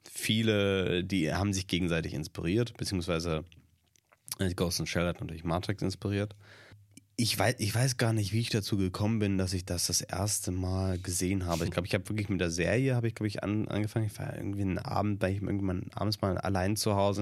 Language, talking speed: German, 205 wpm